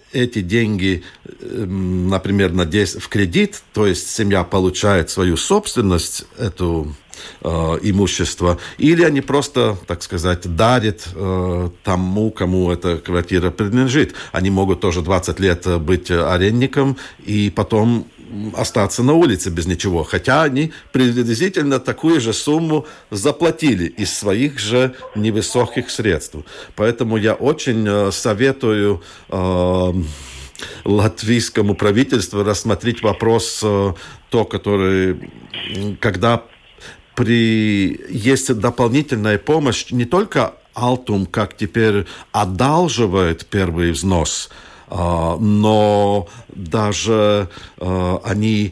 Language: Russian